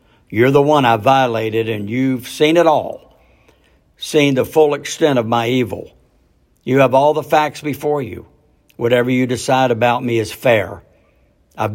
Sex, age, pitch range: male, 60-79, 115-140 Hz